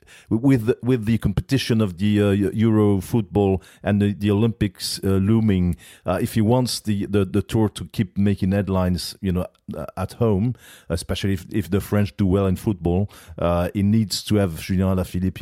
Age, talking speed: 40-59, 185 wpm